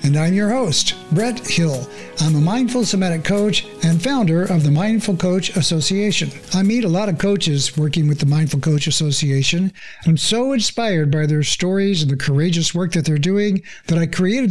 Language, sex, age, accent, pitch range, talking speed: English, male, 60-79, American, 155-205 Hz, 190 wpm